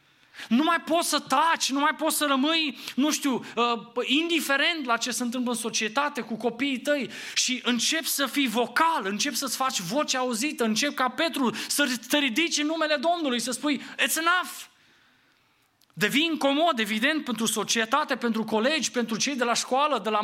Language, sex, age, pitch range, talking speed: English, male, 20-39, 190-270 Hz, 180 wpm